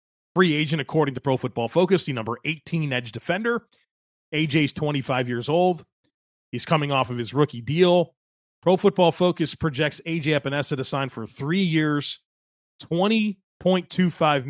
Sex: male